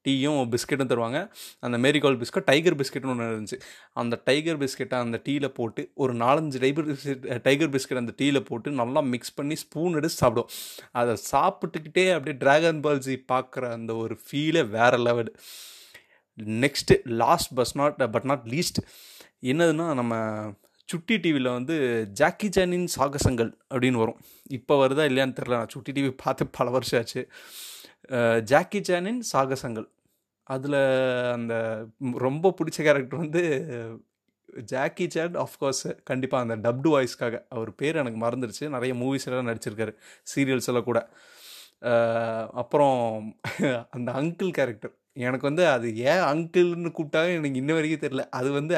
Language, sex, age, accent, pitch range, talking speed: Tamil, male, 30-49, native, 120-155 Hz, 140 wpm